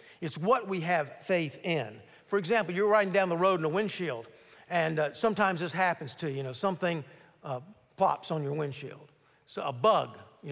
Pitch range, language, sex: 150-200 Hz, English, male